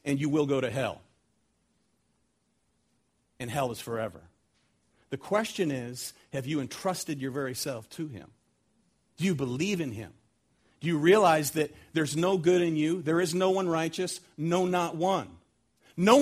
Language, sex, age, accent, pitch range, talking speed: English, male, 50-69, American, 135-205 Hz, 165 wpm